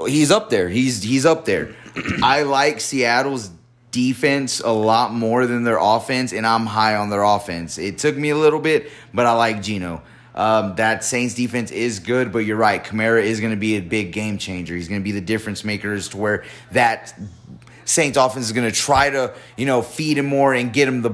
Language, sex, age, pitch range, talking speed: English, male, 30-49, 105-130 Hz, 220 wpm